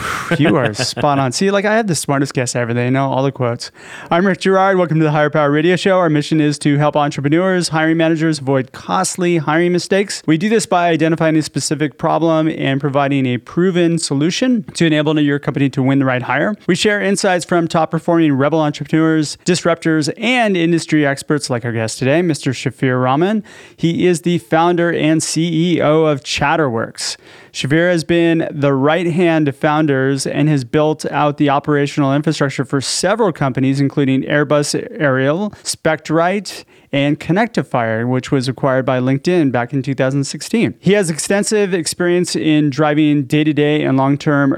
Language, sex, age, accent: English, male, 30-49, American